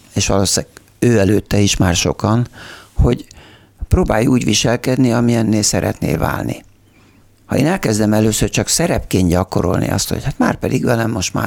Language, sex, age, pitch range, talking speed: Hungarian, male, 60-79, 100-125 Hz, 150 wpm